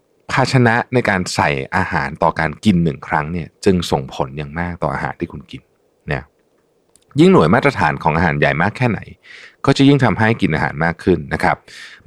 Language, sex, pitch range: Thai, male, 80-110 Hz